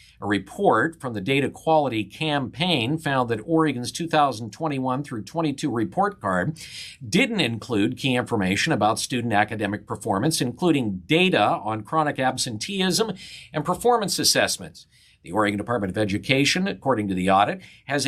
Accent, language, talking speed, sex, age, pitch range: American, English, 135 wpm, male, 50-69, 120-160 Hz